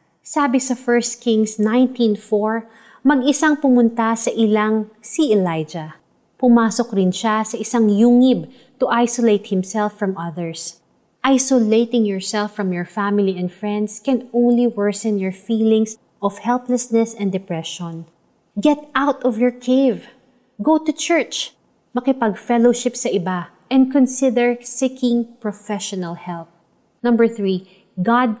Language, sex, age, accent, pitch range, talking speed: Filipino, female, 30-49, native, 190-240 Hz, 120 wpm